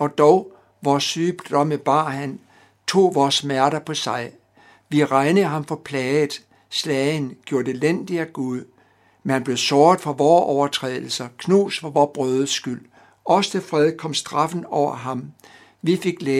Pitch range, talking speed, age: 130-165 Hz, 155 wpm, 60-79